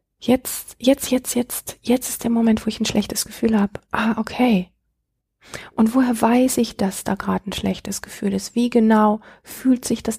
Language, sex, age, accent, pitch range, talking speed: German, female, 30-49, German, 200-235 Hz, 190 wpm